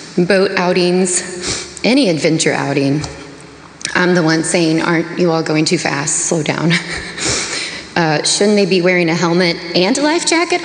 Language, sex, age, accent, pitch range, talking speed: English, female, 20-39, American, 165-240 Hz, 160 wpm